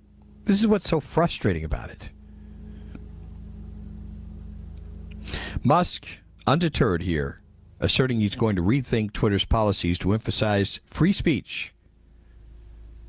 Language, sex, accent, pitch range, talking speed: English, male, American, 85-130 Hz, 95 wpm